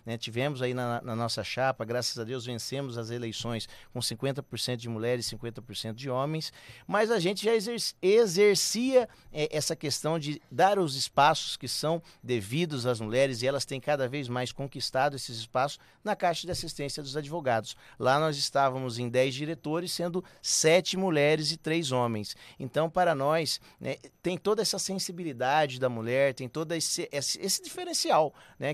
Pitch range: 125-165 Hz